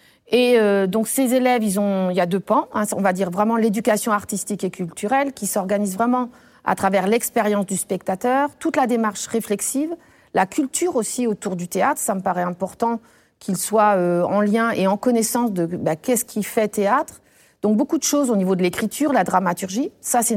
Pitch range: 185-235 Hz